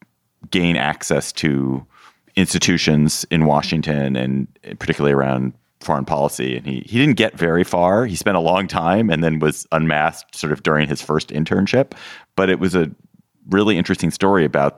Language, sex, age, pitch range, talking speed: English, male, 30-49, 65-80 Hz, 165 wpm